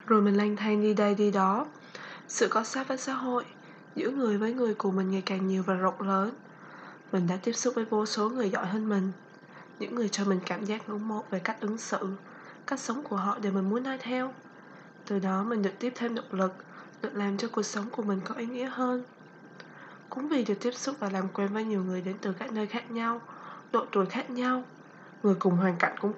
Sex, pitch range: female, 190-235 Hz